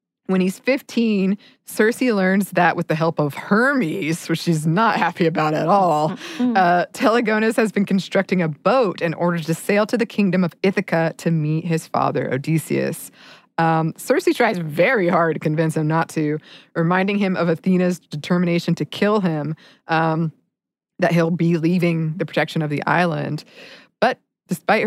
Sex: female